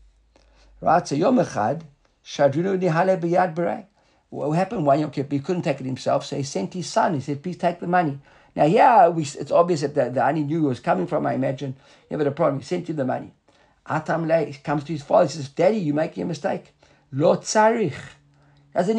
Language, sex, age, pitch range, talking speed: English, male, 50-69, 140-190 Hz, 200 wpm